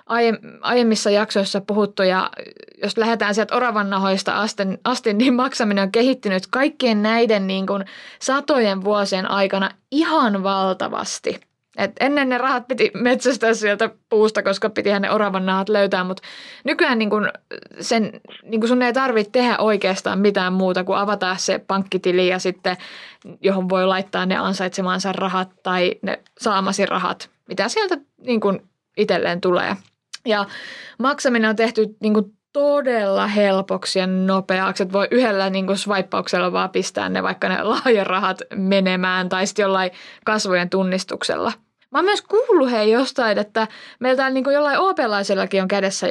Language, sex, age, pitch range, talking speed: Finnish, female, 20-39, 190-245 Hz, 145 wpm